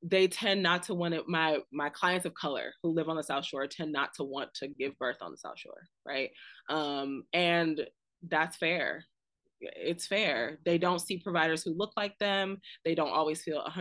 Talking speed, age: 205 wpm, 20-39